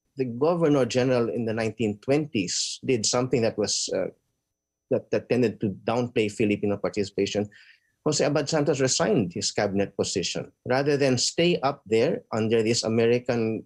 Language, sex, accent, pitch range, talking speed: English, male, Filipino, 105-140 Hz, 145 wpm